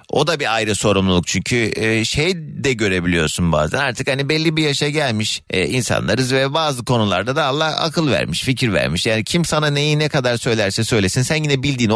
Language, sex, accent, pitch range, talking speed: Turkish, male, native, 110-155 Hz, 185 wpm